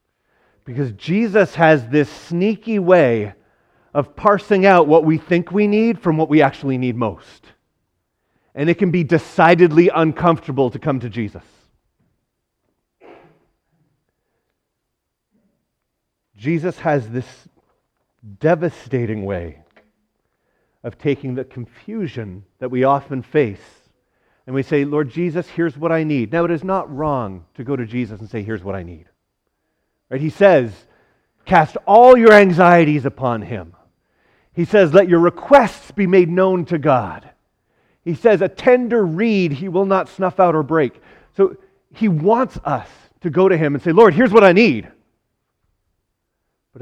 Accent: American